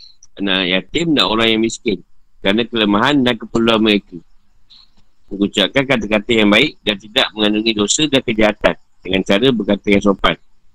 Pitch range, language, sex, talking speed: 105-120 Hz, Malay, male, 145 wpm